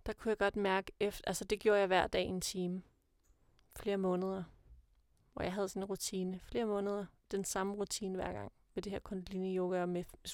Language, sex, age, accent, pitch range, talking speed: Danish, female, 30-49, native, 190-210 Hz, 210 wpm